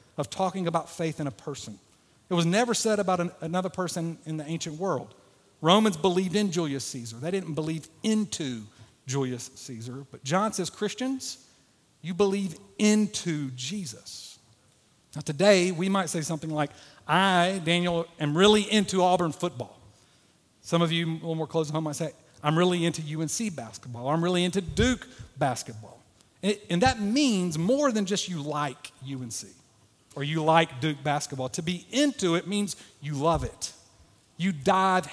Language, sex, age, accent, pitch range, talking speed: English, male, 50-69, American, 150-195 Hz, 165 wpm